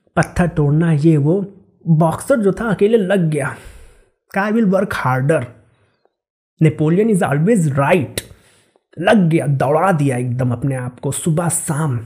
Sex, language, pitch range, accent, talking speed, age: male, Hindi, 145-205 Hz, native, 135 wpm, 30-49